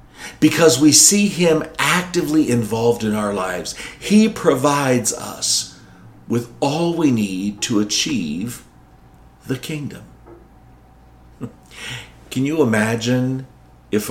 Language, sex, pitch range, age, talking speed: English, male, 100-145 Hz, 50-69, 100 wpm